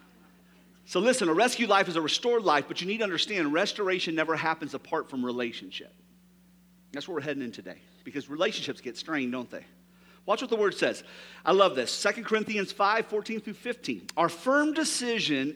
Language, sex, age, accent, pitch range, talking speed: English, male, 50-69, American, 180-260 Hz, 190 wpm